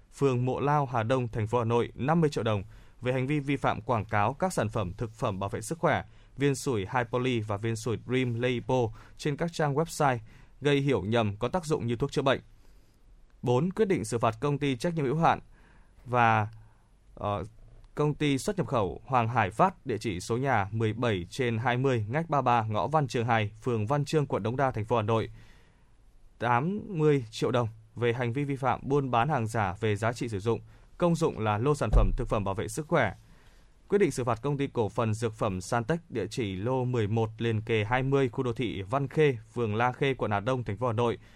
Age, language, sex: 20-39, Vietnamese, male